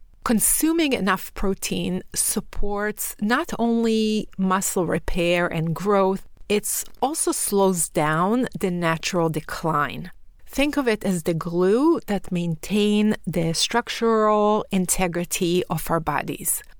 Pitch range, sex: 175-215 Hz, female